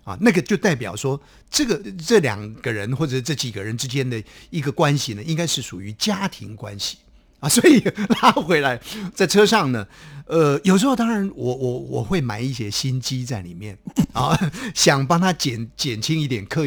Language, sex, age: Chinese, male, 50-69